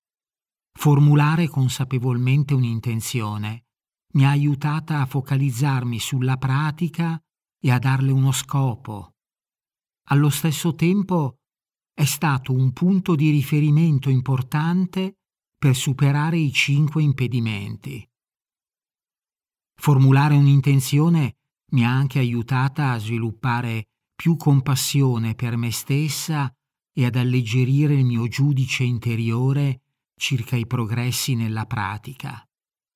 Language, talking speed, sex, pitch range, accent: Italian, 100 wpm, male, 120-145 Hz, native